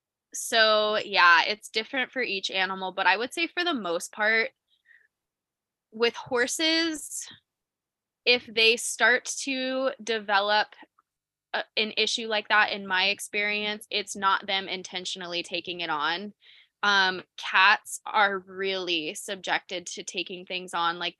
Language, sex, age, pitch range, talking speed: English, female, 20-39, 190-220 Hz, 130 wpm